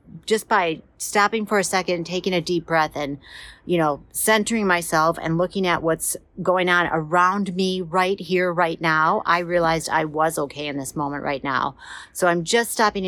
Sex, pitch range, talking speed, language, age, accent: female, 165-210 Hz, 195 wpm, English, 50-69, American